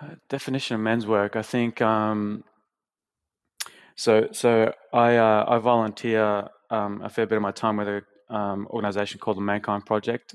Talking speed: 175 wpm